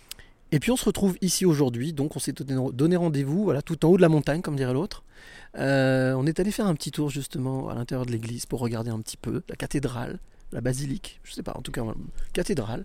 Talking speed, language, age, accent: 245 wpm, French, 30-49, French